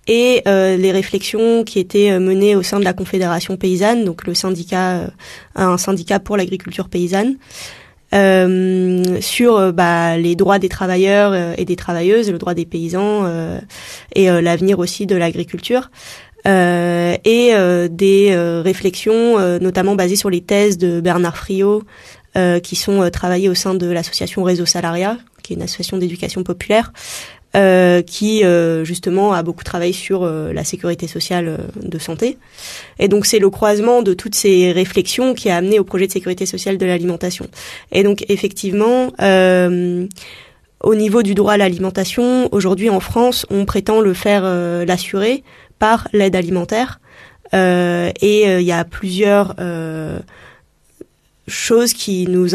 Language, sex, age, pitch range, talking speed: French, female, 20-39, 180-205 Hz, 165 wpm